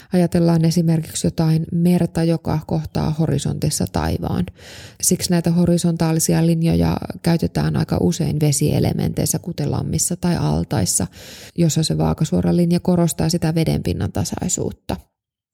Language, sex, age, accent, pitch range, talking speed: Finnish, female, 20-39, native, 155-185 Hz, 105 wpm